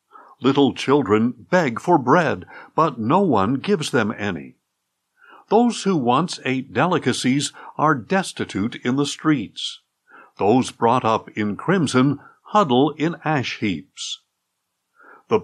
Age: 60-79